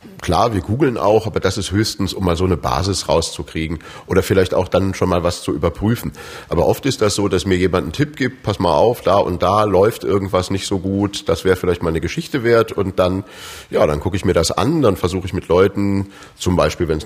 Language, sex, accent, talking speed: German, male, German, 245 wpm